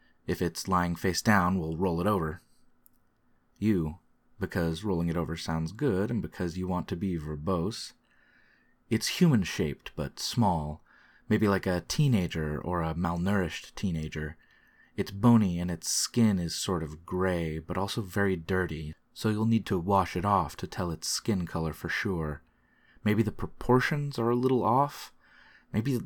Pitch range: 85-110 Hz